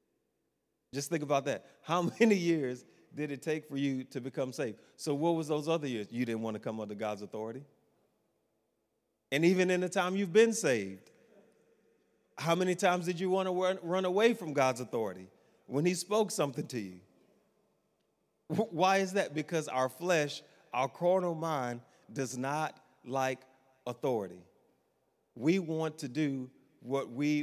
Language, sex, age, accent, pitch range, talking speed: English, male, 30-49, American, 130-165 Hz, 160 wpm